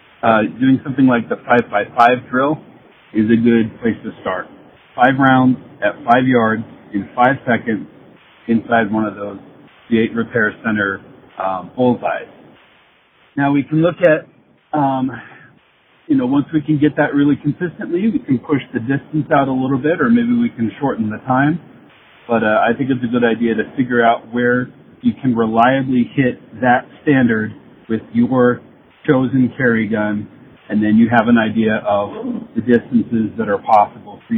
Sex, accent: male, American